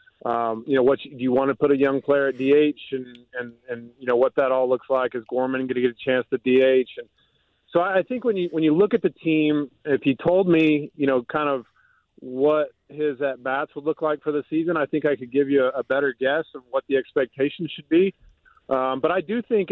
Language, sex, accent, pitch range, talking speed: English, male, American, 130-155 Hz, 255 wpm